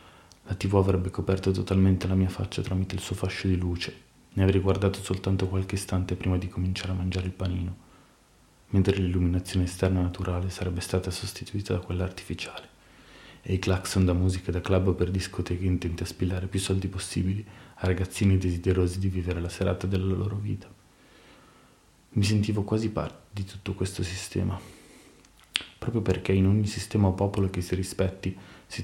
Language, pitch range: Italian, 90-95 Hz